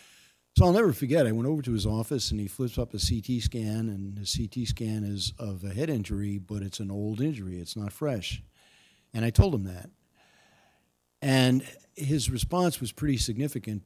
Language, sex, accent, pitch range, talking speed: English, male, American, 105-125 Hz, 195 wpm